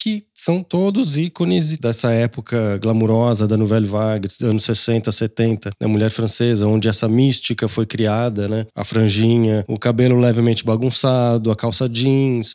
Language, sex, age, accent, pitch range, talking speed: Portuguese, male, 20-39, Brazilian, 105-135 Hz, 160 wpm